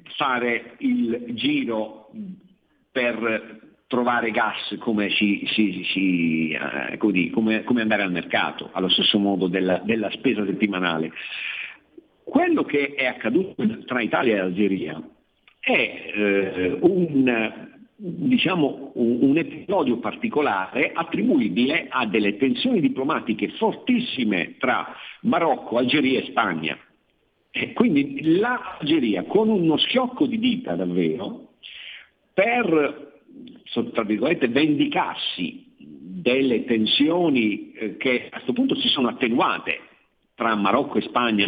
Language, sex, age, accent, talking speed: Italian, male, 50-69, native, 100 wpm